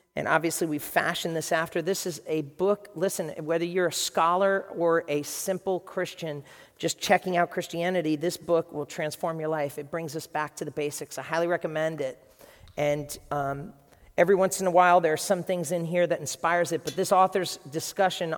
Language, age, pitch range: English, 40-59, 145-175 Hz